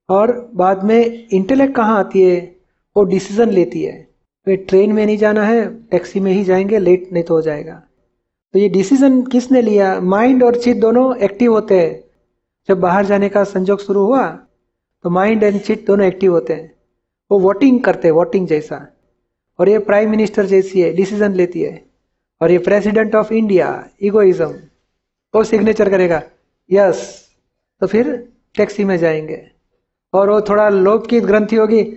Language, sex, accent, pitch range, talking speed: Hindi, male, native, 180-220 Hz, 170 wpm